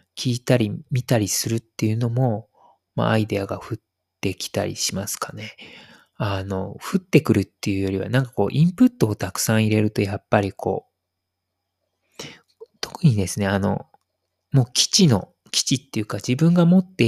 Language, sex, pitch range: Japanese, male, 105-145 Hz